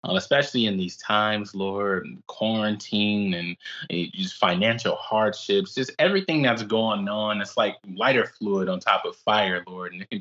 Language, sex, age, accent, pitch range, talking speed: English, male, 20-39, American, 95-145 Hz, 170 wpm